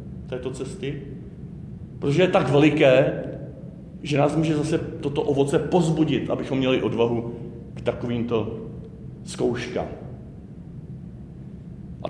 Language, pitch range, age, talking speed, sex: Czech, 130-160 Hz, 40-59, 100 wpm, male